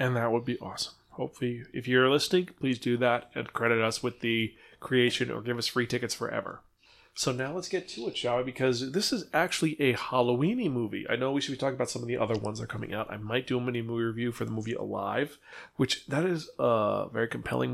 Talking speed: 240 wpm